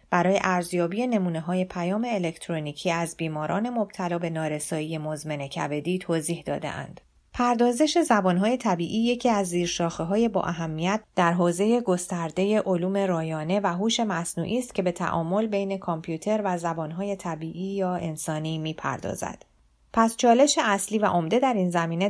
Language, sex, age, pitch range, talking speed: Persian, female, 30-49, 165-205 Hz, 135 wpm